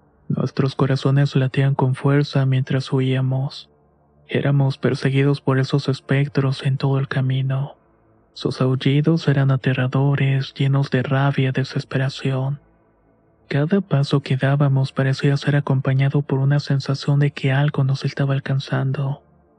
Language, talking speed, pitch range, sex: Spanish, 125 wpm, 135-145 Hz, male